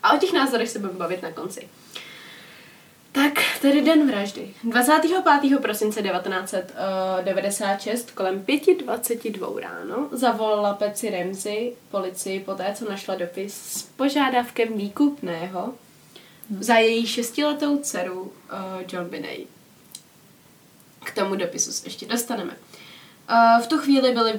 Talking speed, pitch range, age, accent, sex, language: 120 wpm, 200-235 Hz, 20-39, native, female, Czech